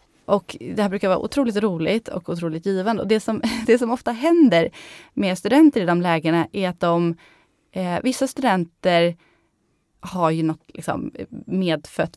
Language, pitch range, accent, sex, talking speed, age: Swedish, 175-235 Hz, native, female, 165 wpm, 20-39